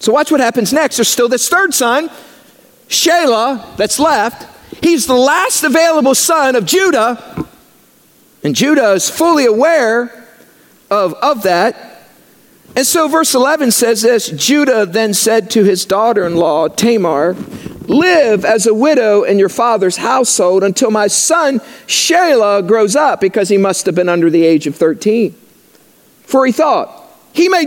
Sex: male